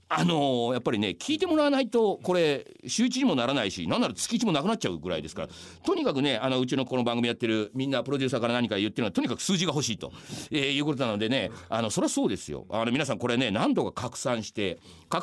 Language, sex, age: Japanese, male, 40-59